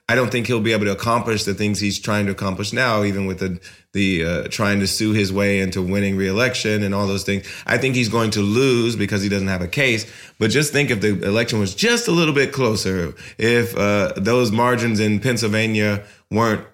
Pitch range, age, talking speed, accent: 95-115 Hz, 20-39, 225 wpm, American